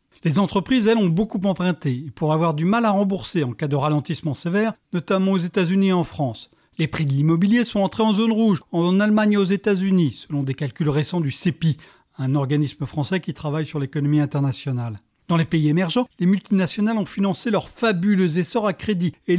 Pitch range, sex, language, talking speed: 160-220 Hz, male, French, 205 wpm